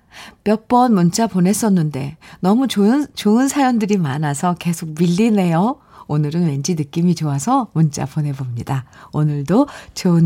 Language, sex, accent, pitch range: Korean, female, native, 155-210 Hz